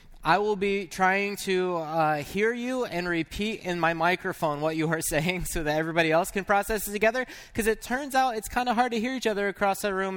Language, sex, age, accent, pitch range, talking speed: English, male, 20-39, American, 145-205 Hz, 235 wpm